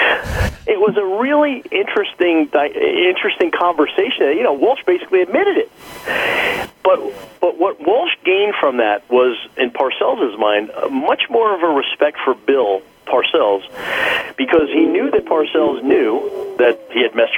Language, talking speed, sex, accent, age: English, 145 wpm, male, American, 40-59